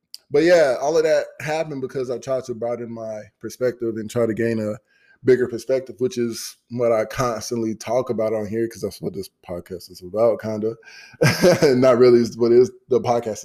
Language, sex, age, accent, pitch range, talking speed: English, male, 20-39, American, 110-125 Hz, 195 wpm